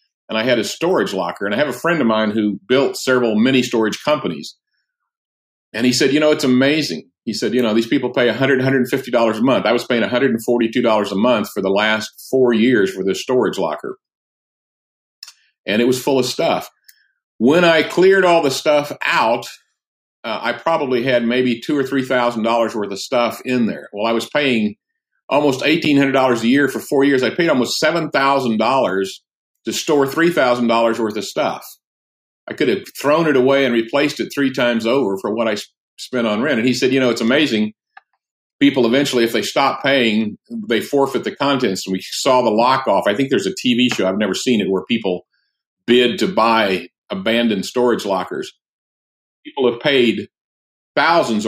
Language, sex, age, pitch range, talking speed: English, male, 50-69, 110-140 Hz, 190 wpm